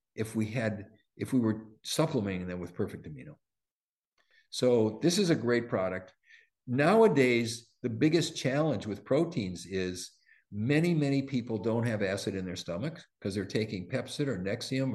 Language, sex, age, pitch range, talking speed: English, male, 50-69, 100-135 Hz, 155 wpm